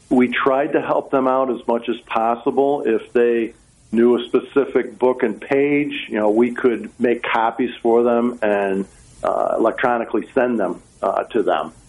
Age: 50-69